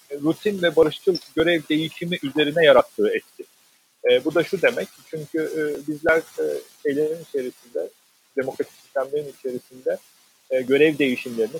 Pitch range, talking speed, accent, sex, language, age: 135-200 Hz, 125 wpm, native, male, Turkish, 40-59